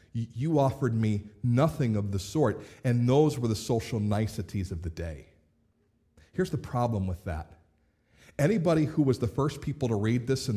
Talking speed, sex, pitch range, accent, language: 175 wpm, male, 100-140 Hz, American, English